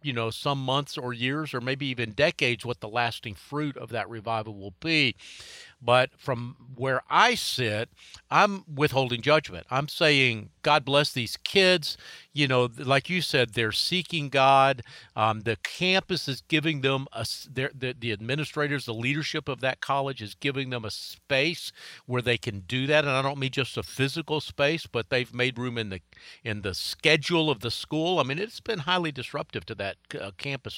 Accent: American